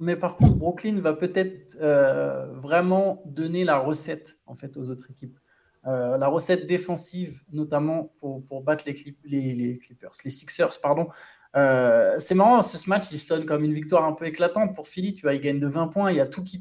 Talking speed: 215 wpm